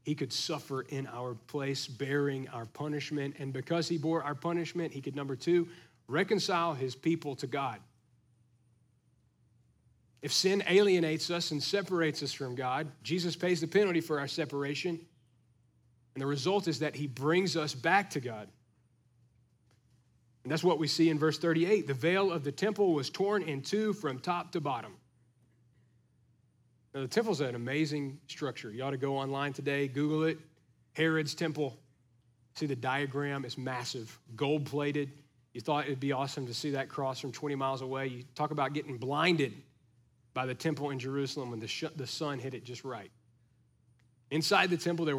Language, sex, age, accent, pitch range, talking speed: English, male, 40-59, American, 125-165 Hz, 170 wpm